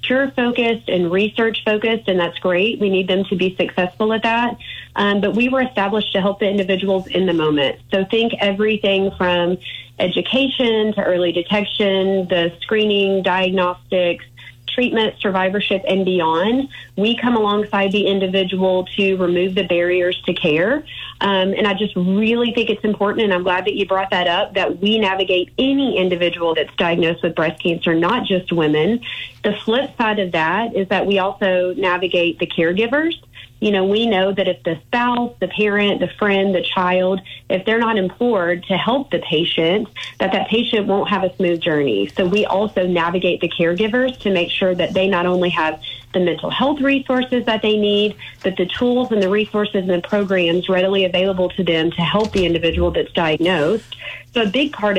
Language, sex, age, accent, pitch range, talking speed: English, female, 30-49, American, 180-215 Hz, 180 wpm